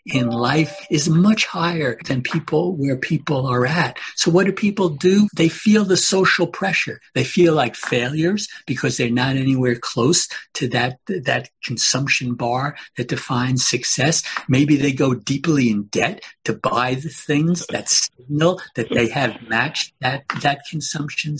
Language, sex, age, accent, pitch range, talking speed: English, male, 60-79, American, 130-175 Hz, 160 wpm